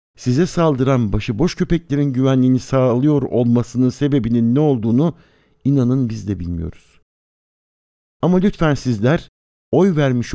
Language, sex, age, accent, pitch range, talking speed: Turkish, male, 60-79, native, 115-145 Hz, 110 wpm